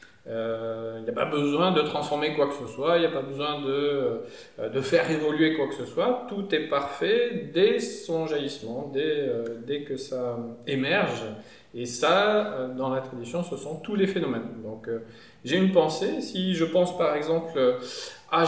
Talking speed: 190 wpm